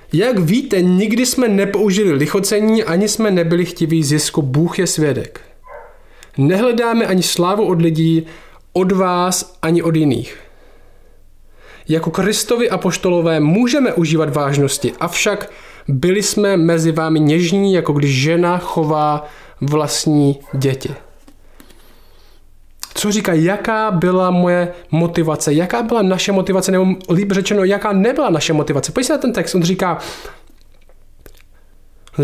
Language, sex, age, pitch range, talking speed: Czech, male, 20-39, 160-205 Hz, 125 wpm